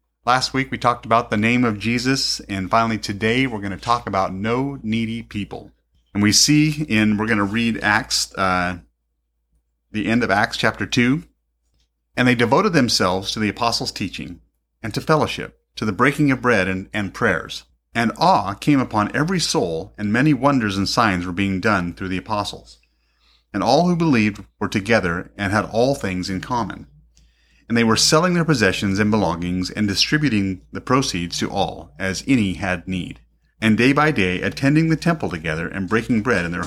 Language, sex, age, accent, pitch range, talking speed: English, male, 30-49, American, 90-120 Hz, 190 wpm